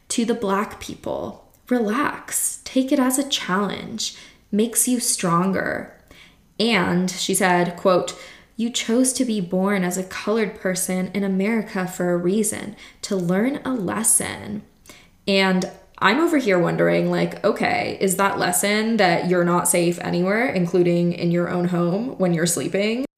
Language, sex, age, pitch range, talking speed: English, female, 10-29, 180-235 Hz, 150 wpm